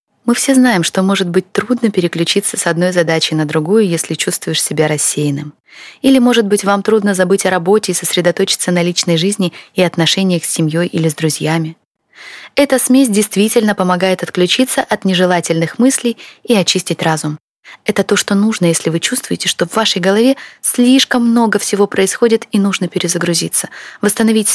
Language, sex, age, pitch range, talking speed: Russian, female, 20-39, 170-220 Hz, 165 wpm